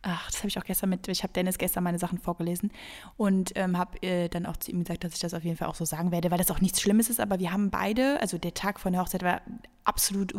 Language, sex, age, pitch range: German, female, 20-39, 185-205 Hz